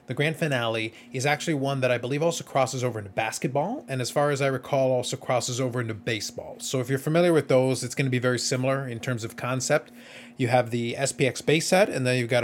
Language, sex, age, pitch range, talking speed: English, male, 30-49, 120-150 Hz, 245 wpm